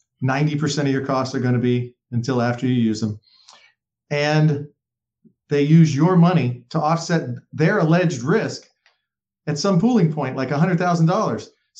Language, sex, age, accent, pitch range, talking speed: English, male, 40-59, American, 130-165 Hz, 140 wpm